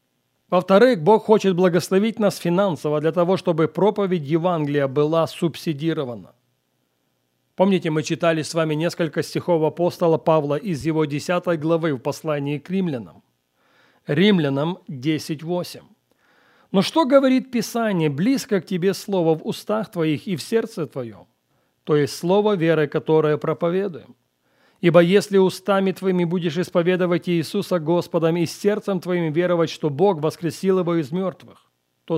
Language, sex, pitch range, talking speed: Russian, male, 150-190 Hz, 135 wpm